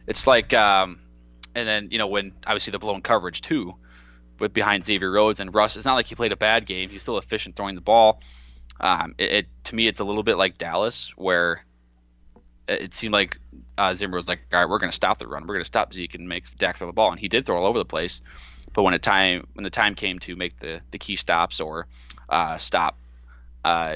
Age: 20-39